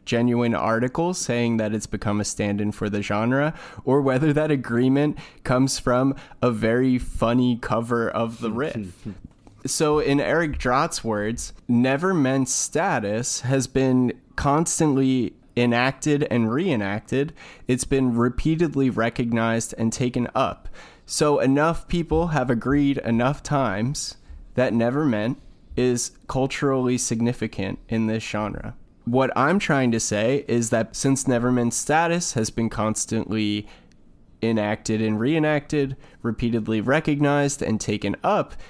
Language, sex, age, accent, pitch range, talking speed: English, male, 20-39, American, 110-135 Hz, 125 wpm